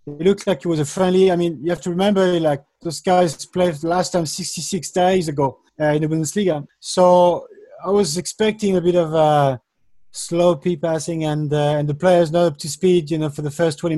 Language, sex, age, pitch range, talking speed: English, male, 30-49, 155-185 Hz, 215 wpm